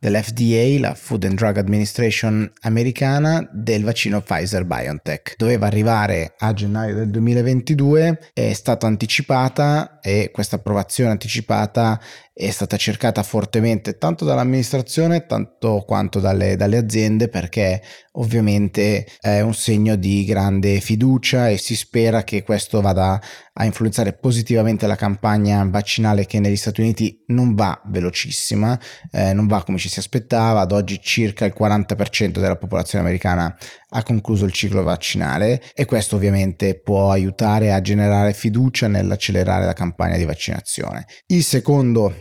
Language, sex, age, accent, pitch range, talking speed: Italian, male, 30-49, native, 100-115 Hz, 140 wpm